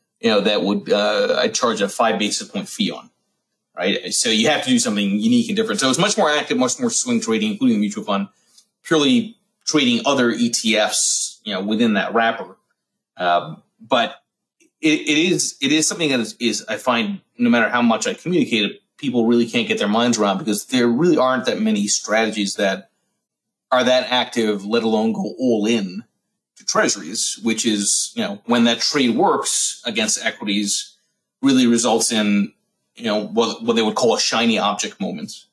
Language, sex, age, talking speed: English, male, 30-49, 190 wpm